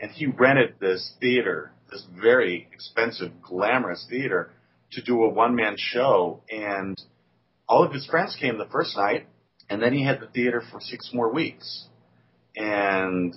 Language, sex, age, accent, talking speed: English, male, 40-59, American, 155 wpm